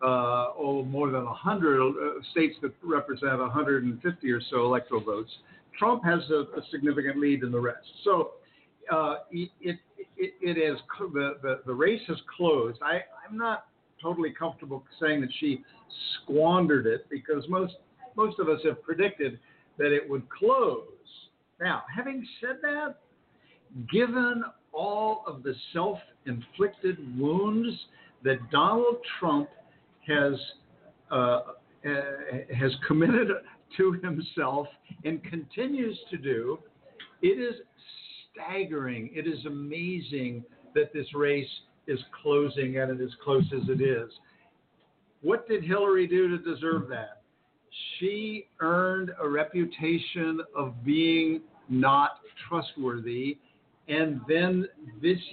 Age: 60-79